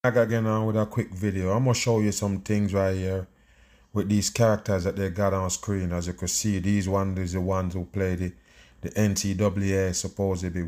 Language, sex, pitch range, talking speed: English, male, 95-115 Hz, 210 wpm